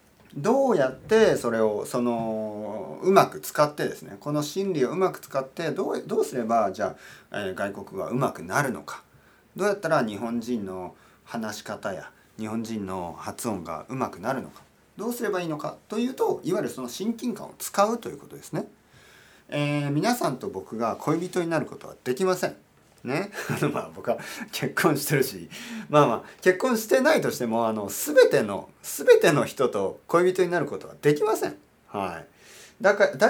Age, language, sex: 40-59, Japanese, male